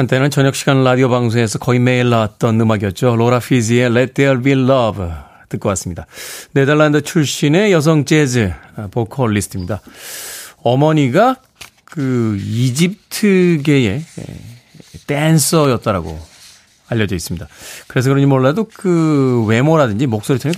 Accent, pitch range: native, 120-155 Hz